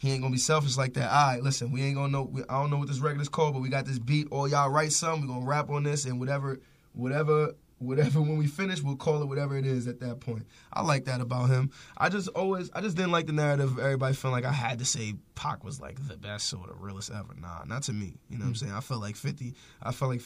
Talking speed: 295 wpm